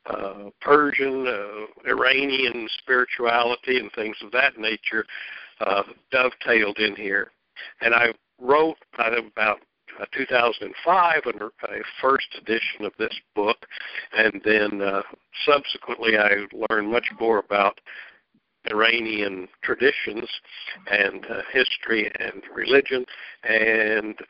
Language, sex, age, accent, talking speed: English, male, 60-79, American, 105 wpm